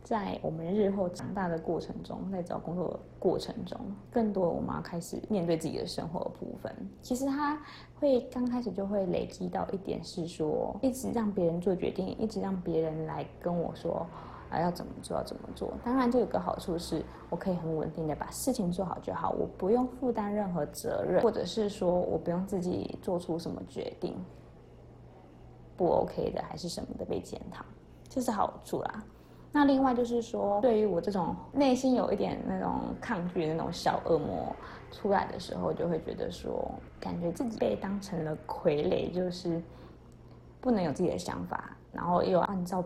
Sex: female